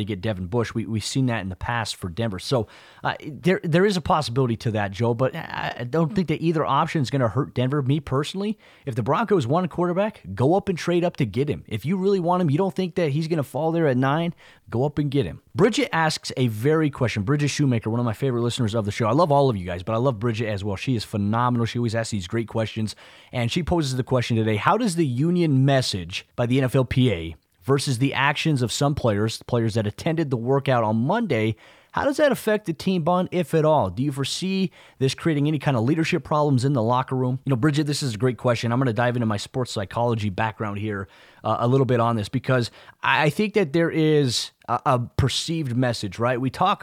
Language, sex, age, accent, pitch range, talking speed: English, male, 30-49, American, 115-150 Hz, 245 wpm